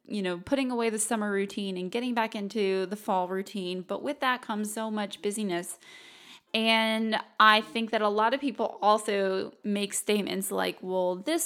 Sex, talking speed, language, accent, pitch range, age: female, 185 wpm, English, American, 190-220 Hz, 20-39